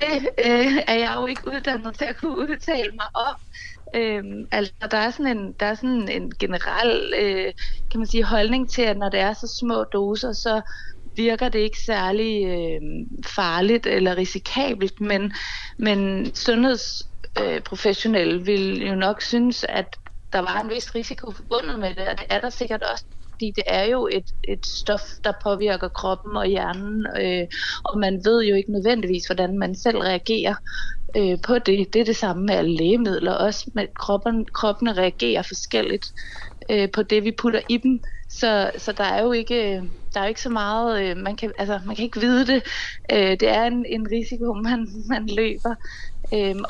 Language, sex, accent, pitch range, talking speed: Danish, female, native, 200-240 Hz, 175 wpm